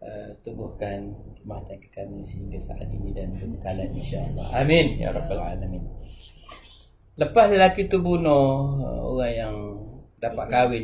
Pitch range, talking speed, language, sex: 105-140 Hz, 140 wpm, Malay, male